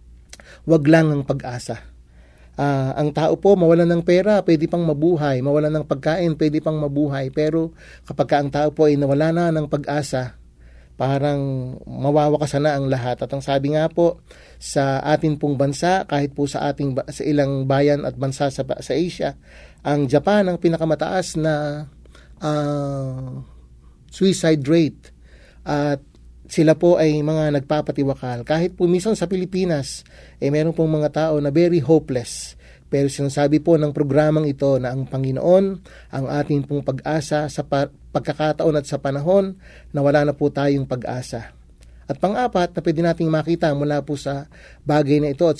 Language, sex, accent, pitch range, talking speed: English, male, Filipino, 135-160 Hz, 160 wpm